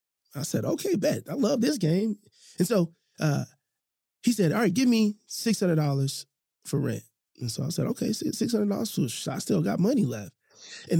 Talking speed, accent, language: 180 wpm, American, English